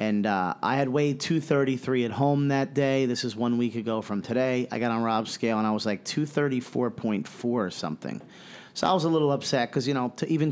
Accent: American